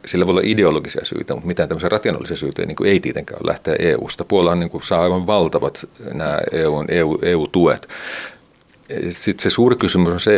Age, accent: 40-59, native